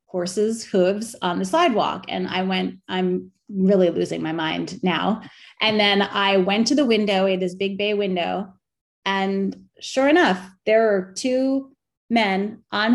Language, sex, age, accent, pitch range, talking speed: English, female, 30-49, American, 185-230 Hz, 160 wpm